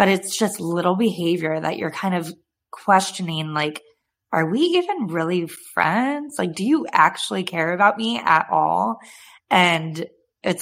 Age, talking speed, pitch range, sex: 20-39, 155 wpm, 155-190 Hz, female